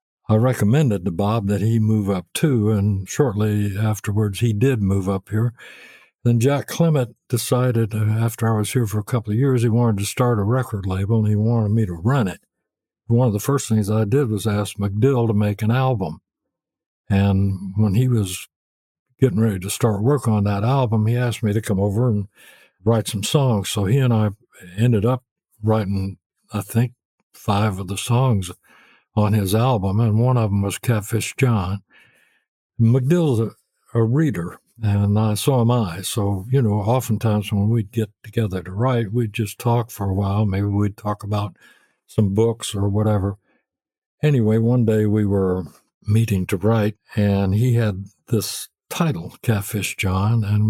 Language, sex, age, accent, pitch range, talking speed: English, male, 60-79, American, 100-120 Hz, 180 wpm